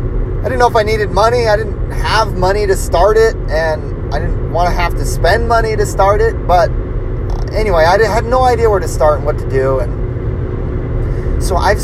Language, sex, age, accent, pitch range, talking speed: English, male, 30-49, American, 115-170 Hz, 215 wpm